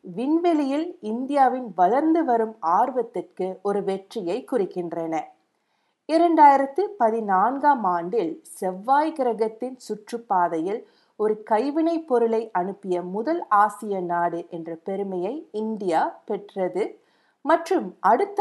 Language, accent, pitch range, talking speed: Tamil, native, 185-280 Hz, 85 wpm